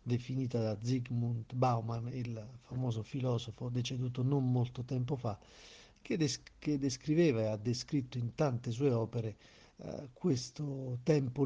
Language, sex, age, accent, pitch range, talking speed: Italian, male, 50-69, native, 115-140 Hz, 125 wpm